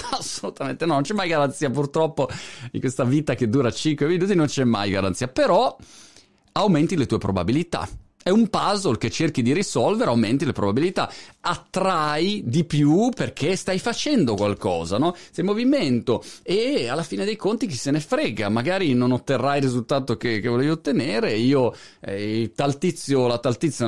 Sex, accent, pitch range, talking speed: male, native, 115-175 Hz, 170 wpm